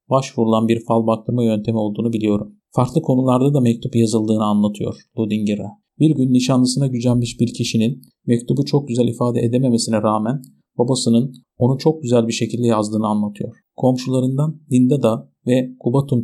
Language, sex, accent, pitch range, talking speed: Turkish, male, native, 115-130 Hz, 140 wpm